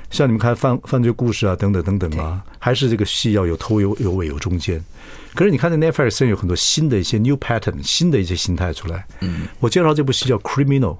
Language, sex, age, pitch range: Chinese, male, 50-69, 90-120 Hz